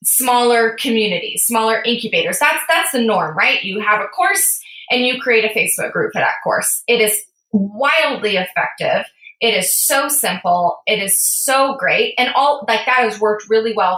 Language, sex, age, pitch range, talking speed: English, female, 20-39, 200-250 Hz, 180 wpm